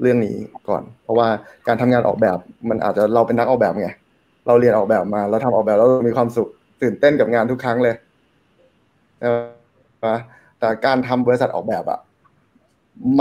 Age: 20-39